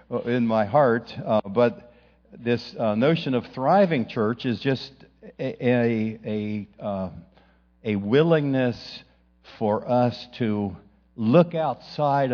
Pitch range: 105-125 Hz